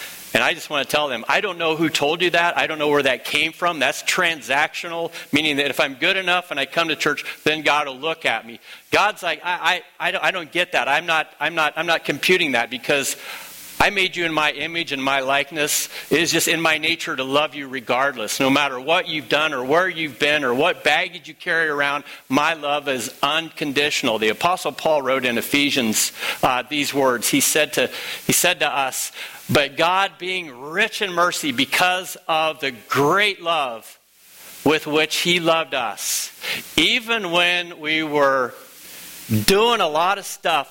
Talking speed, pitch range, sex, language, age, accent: 200 wpm, 140-175 Hz, male, English, 50-69, American